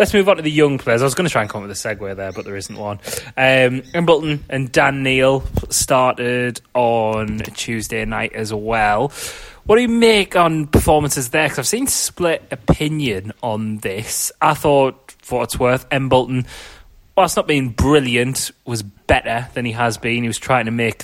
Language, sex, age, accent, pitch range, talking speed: English, male, 20-39, British, 110-130 Hz, 200 wpm